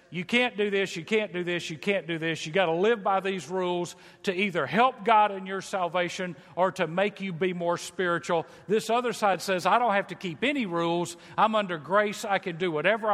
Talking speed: 235 wpm